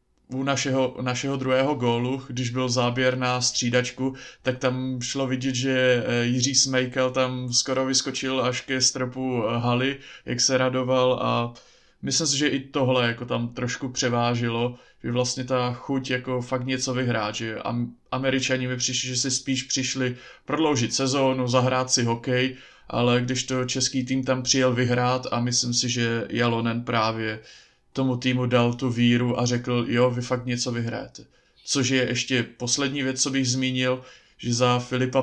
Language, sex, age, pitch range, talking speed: Slovak, male, 20-39, 120-130 Hz, 160 wpm